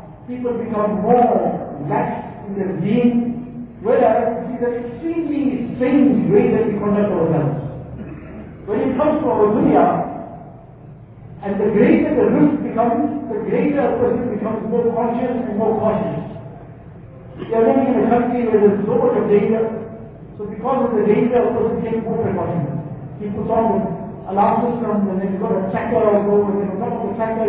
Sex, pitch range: male, 200-240 Hz